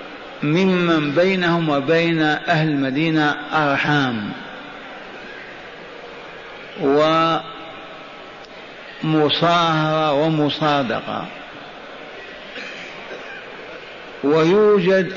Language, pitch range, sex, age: Arabic, 145-175 Hz, male, 50-69